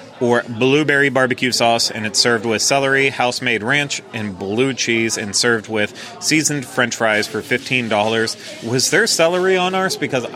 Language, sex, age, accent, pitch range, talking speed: English, male, 30-49, American, 105-130 Hz, 160 wpm